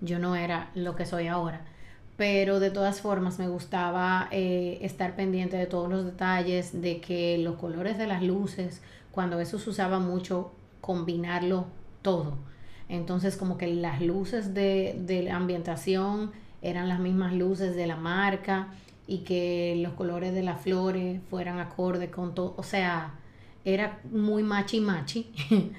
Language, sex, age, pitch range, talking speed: Spanish, female, 30-49, 175-195 Hz, 155 wpm